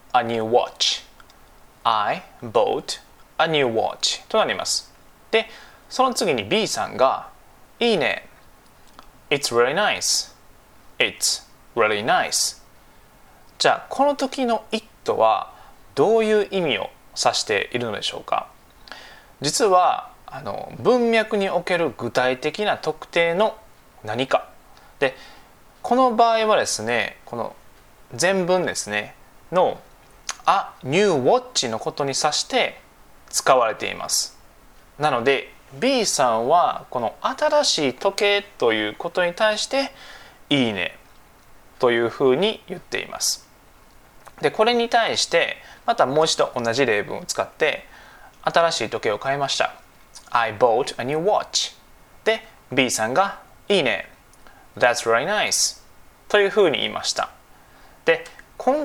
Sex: male